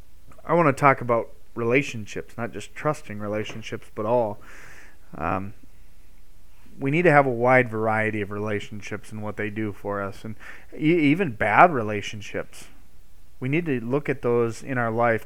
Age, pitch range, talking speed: 30-49, 105-135 Hz, 160 wpm